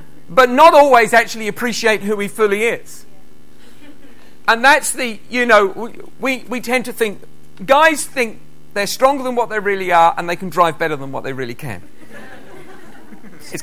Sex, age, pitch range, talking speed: male, 40-59, 195-250 Hz, 170 wpm